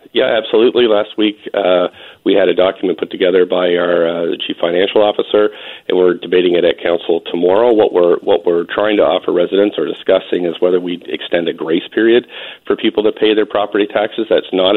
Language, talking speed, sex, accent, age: English, 205 wpm, male, American, 40-59